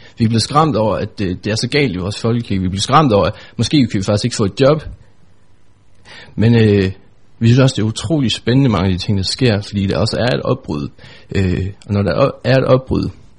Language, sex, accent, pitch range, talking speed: Danish, male, native, 95-120 Hz, 240 wpm